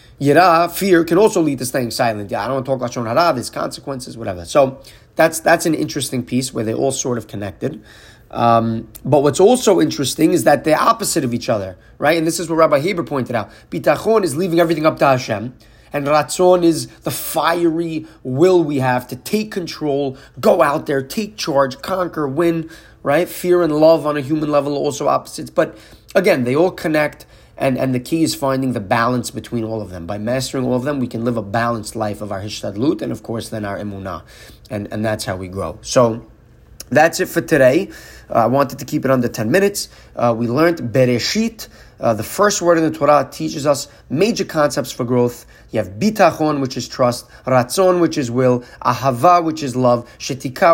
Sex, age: male, 30-49